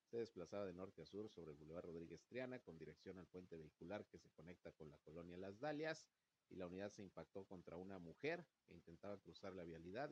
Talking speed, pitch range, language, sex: 220 wpm, 85-105 Hz, Spanish, male